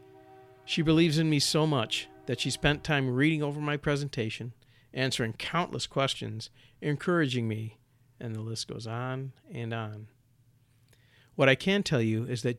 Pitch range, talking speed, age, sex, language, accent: 120-145 Hz, 155 wpm, 50-69, male, English, American